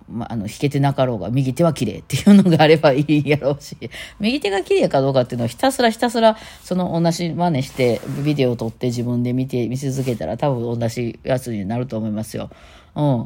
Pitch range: 120-175 Hz